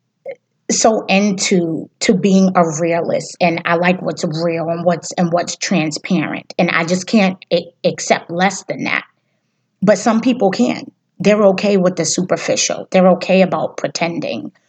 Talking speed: 155 wpm